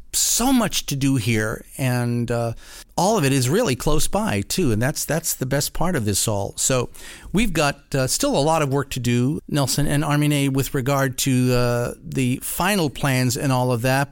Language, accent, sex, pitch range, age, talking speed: English, American, male, 115-145 Hz, 50-69, 210 wpm